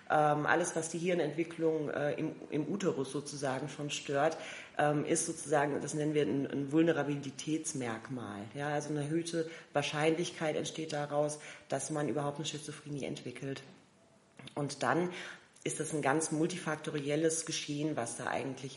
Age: 30-49